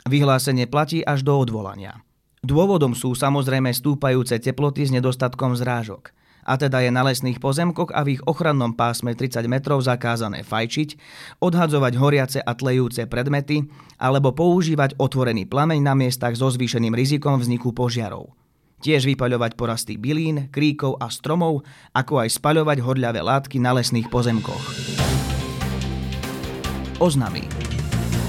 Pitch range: 120-150 Hz